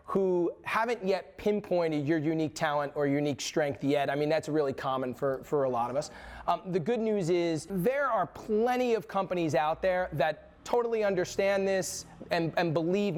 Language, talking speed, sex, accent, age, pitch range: English, 185 wpm, male, American, 30-49, 155-195 Hz